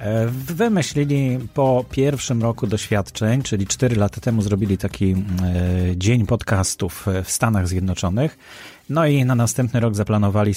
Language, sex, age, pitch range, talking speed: Polish, male, 30-49, 95-120 Hz, 130 wpm